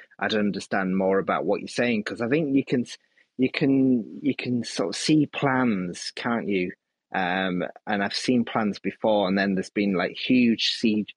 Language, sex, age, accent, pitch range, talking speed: English, male, 30-49, British, 100-115 Hz, 190 wpm